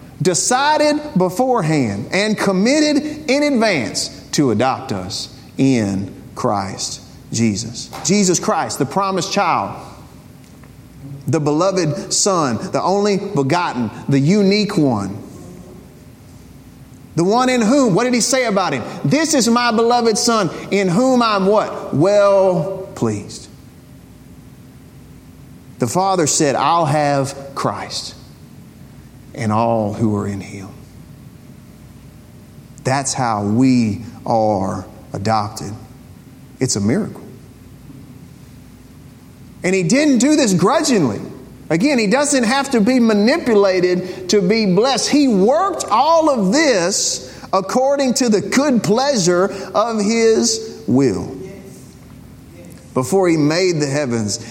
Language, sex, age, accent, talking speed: English, male, 40-59, American, 110 wpm